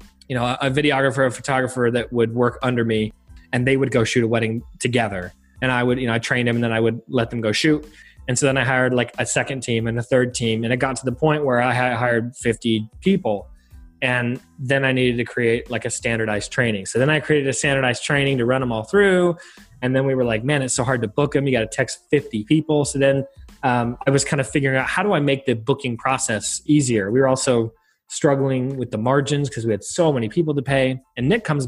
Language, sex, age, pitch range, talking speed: English, male, 20-39, 115-135 Hz, 255 wpm